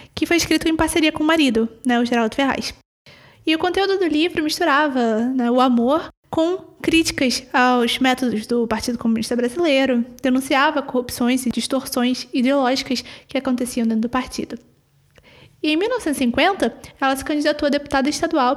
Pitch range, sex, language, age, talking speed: 250-310 Hz, female, Portuguese, 10-29, 155 wpm